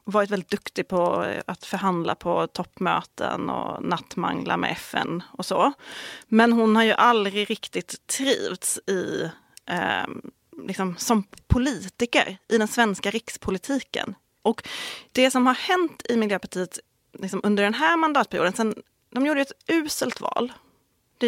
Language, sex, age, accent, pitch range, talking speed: Swedish, female, 30-49, native, 200-255 Hz, 140 wpm